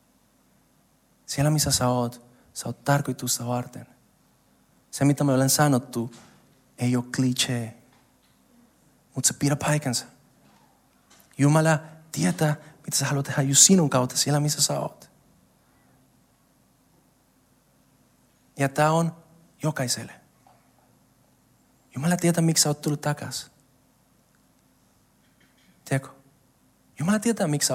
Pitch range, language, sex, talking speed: 125-165 Hz, Finnish, male, 105 wpm